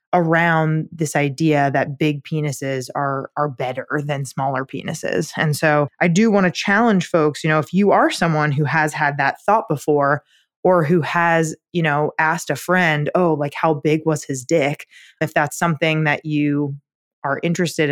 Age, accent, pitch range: 20-39, American, 150-180 Hz